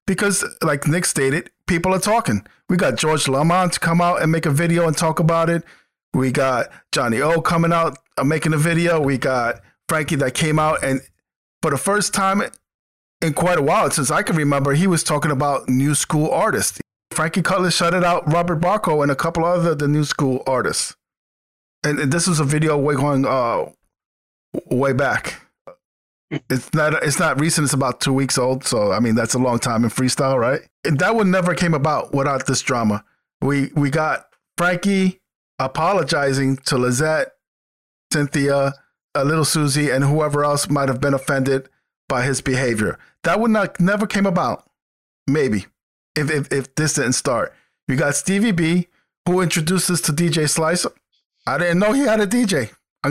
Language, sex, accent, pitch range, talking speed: English, male, American, 135-175 Hz, 185 wpm